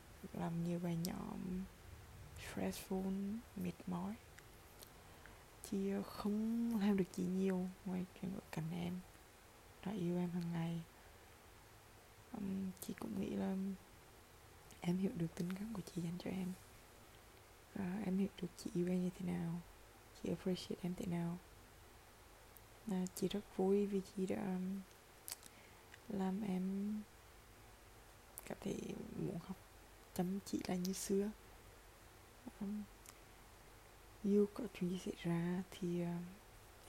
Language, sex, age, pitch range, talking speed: Vietnamese, female, 20-39, 115-195 Hz, 125 wpm